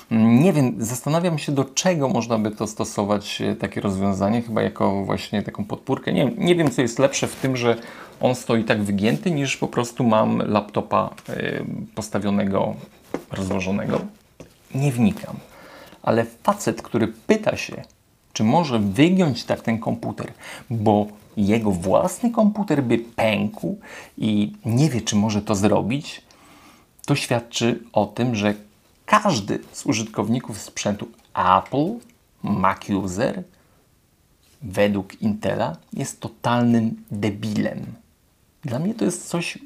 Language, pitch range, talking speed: Polish, 105-135 Hz, 125 wpm